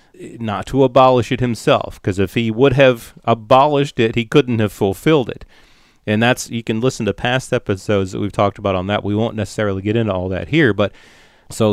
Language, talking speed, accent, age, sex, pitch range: English, 210 wpm, American, 40-59, male, 100-130 Hz